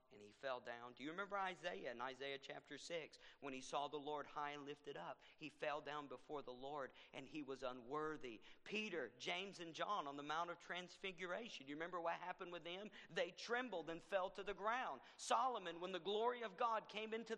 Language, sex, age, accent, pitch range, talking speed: English, male, 50-69, American, 145-225 Hz, 215 wpm